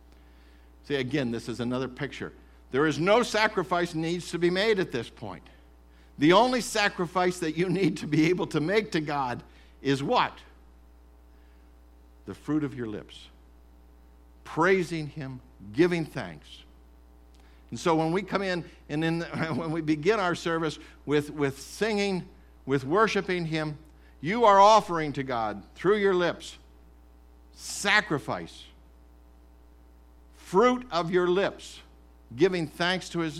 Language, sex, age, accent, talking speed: English, male, 60-79, American, 135 wpm